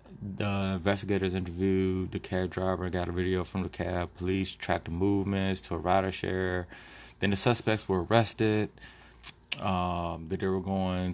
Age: 20-39